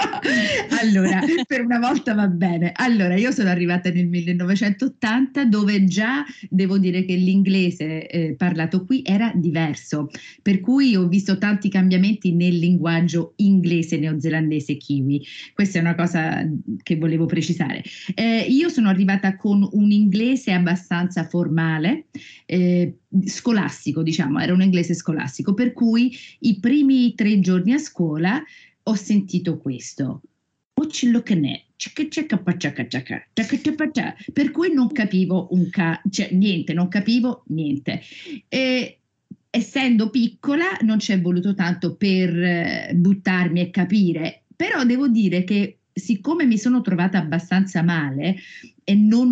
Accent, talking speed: native, 125 wpm